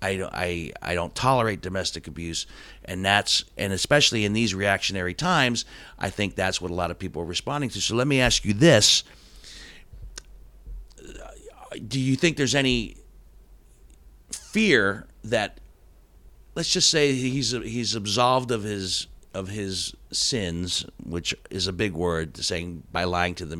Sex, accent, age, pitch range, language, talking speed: male, American, 50-69, 90-120 Hz, English, 155 wpm